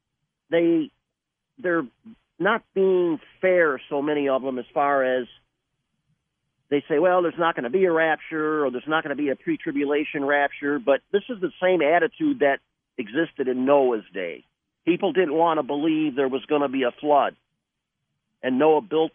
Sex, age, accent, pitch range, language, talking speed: male, 50-69, American, 130-165 Hz, English, 180 wpm